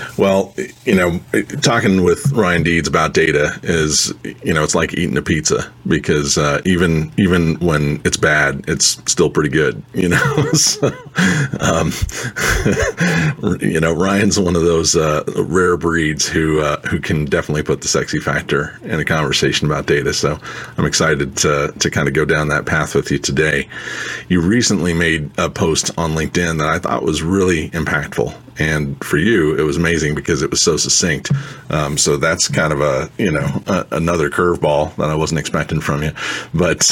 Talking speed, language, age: 180 wpm, English, 40-59